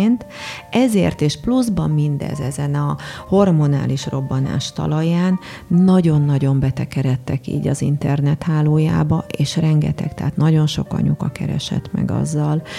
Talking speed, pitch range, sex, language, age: 115 wpm, 140-175 Hz, female, Hungarian, 30-49